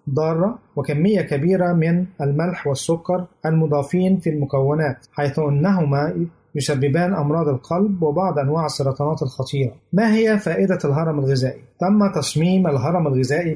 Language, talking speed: Arabic, 120 wpm